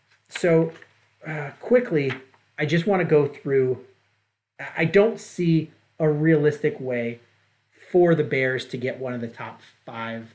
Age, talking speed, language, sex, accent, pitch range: 30-49, 145 wpm, English, male, American, 115-150 Hz